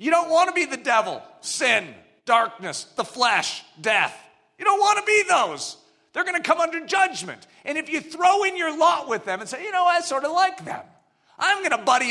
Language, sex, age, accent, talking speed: English, male, 40-59, American, 230 wpm